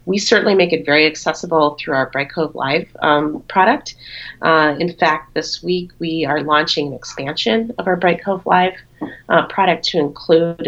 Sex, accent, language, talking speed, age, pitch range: female, American, English, 180 wpm, 30-49, 145-175 Hz